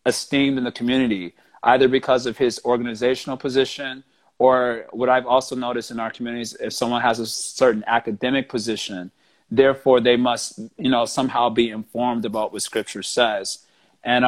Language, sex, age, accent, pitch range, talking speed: English, male, 30-49, American, 115-135 Hz, 160 wpm